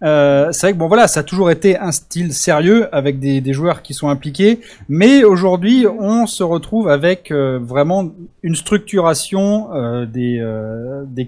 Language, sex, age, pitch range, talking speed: French, male, 20-39, 140-195 Hz, 180 wpm